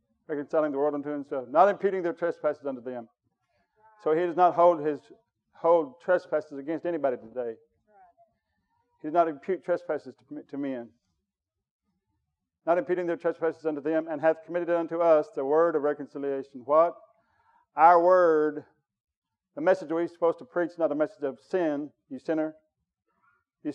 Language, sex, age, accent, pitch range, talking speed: English, male, 50-69, American, 150-200 Hz, 155 wpm